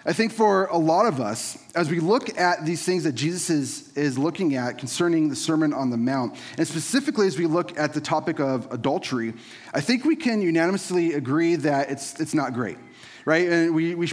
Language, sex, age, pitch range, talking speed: English, male, 30-49, 135-180 Hz, 210 wpm